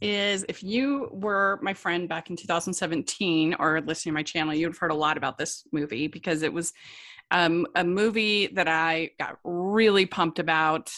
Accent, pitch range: American, 160-185 Hz